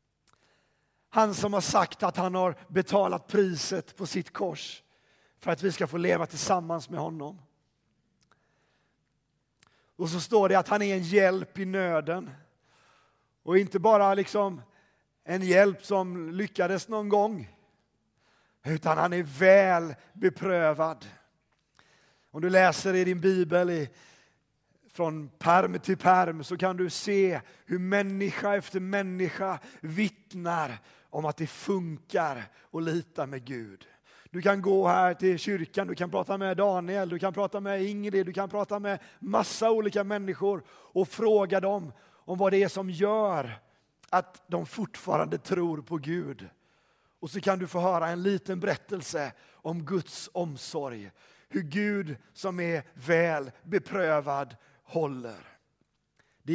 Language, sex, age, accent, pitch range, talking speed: Swedish, male, 40-59, native, 165-195 Hz, 140 wpm